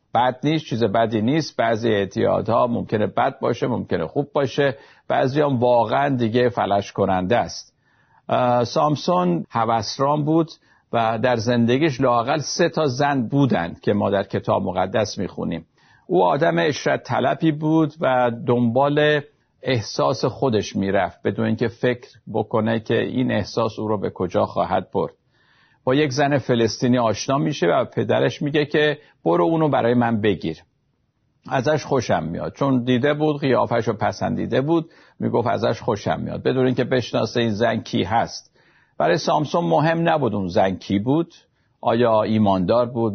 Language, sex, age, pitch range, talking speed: Persian, male, 50-69, 115-145 Hz, 145 wpm